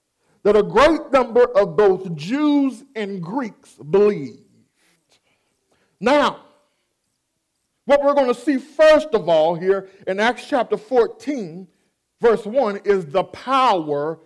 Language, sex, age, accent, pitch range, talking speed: English, male, 50-69, American, 195-290 Hz, 120 wpm